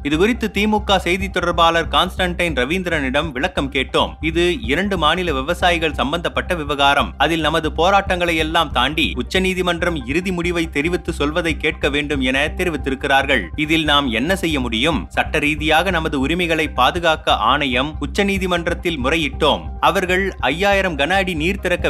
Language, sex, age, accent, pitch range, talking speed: Tamil, male, 30-49, native, 155-185 Hz, 125 wpm